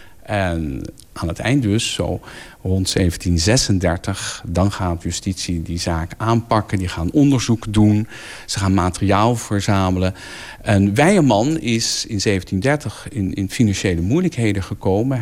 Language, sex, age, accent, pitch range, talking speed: Dutch, male, 50-69, Dutch, 95-130 Hz, 125 wpm